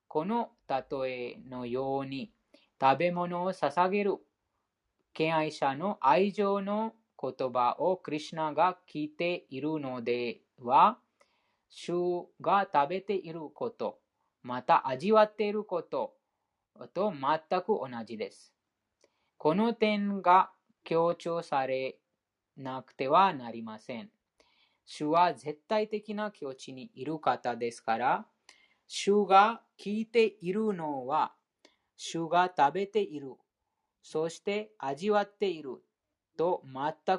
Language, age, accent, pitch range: Japanese, 20-39, Indian, 140-210 Hz